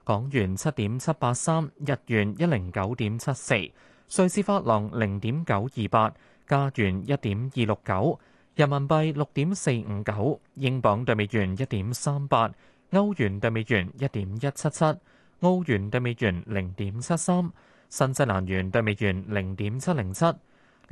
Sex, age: male, 20-39